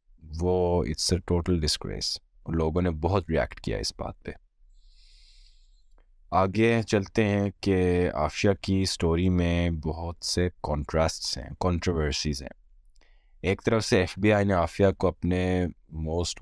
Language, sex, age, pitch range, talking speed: Urdu, male, 20-39, 80-100 Hz, 135 wpm